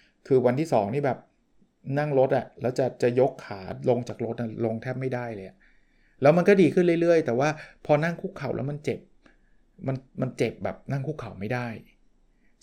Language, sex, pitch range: Thai, male, 115-150 Hz